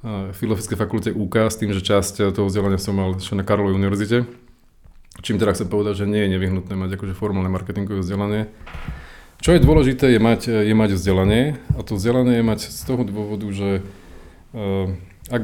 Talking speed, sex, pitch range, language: 185 wpm, male, 95-105 Hz, Slovak